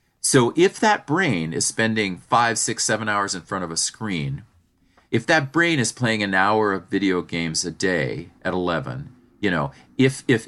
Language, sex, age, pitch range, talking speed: English, male, 40-59, 90-125 Hz, 190 wpm